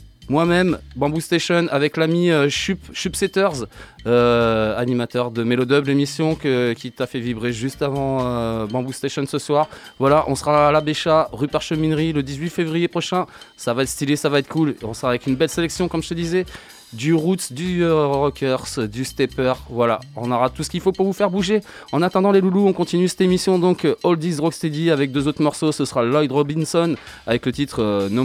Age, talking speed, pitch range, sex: 20-39, 210 wpm, 120-160 Hz, male